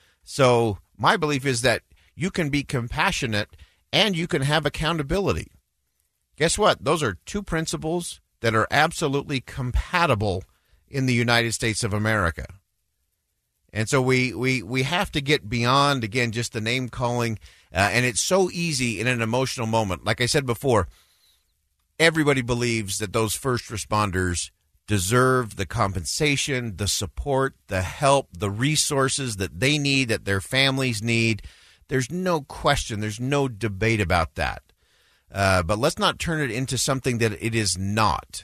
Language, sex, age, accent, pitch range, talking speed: English, male, 50-69, American, 100-135 Hz, 155 wpm